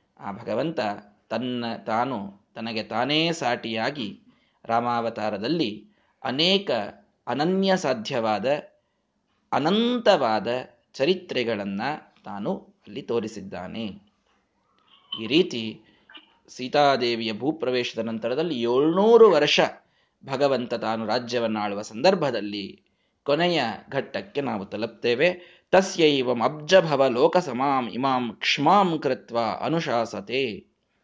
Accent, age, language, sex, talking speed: native, 20-39, Kannada, male, 70 wpm